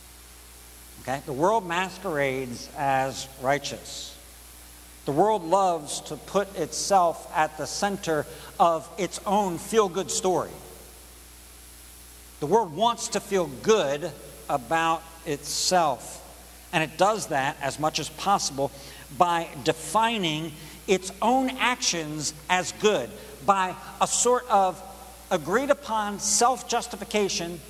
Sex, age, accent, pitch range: male, 60-79, American, 145-205 Hz